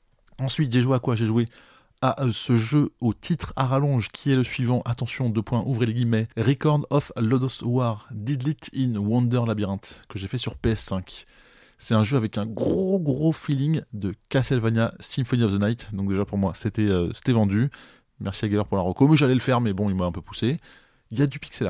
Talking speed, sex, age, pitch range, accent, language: 225 wpm, male, 20-39, 105-130 Hz, French, French